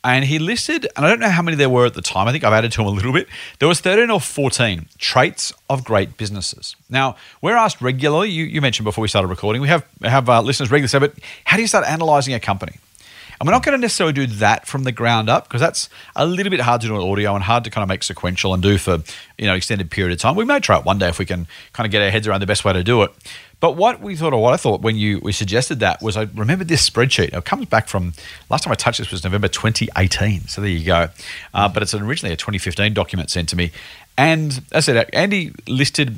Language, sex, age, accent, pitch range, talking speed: English, male, 40-59, Australian, 100-155 Hz, 280 wpm